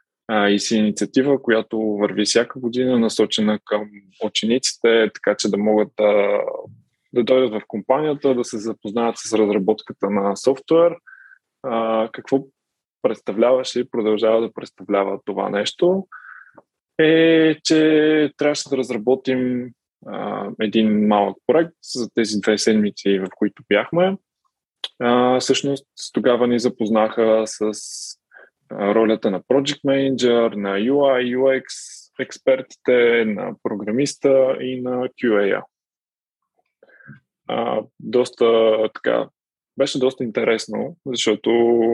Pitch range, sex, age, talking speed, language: 110-135 Hz, male, 20-39, 105 wpm, Bulgarian